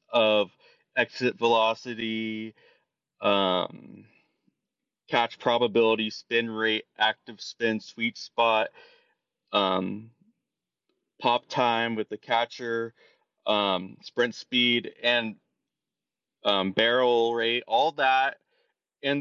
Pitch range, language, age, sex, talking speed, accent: 115-155 Hz, English, 30-49, male, 85 wpm, American